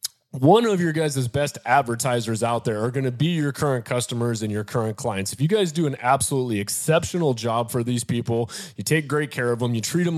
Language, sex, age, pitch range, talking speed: English, male, 30-49, 120-155 Hz, 230 wpm